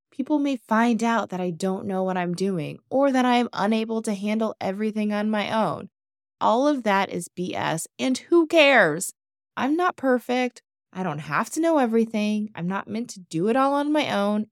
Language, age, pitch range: English, 20-39, 180-245 Hz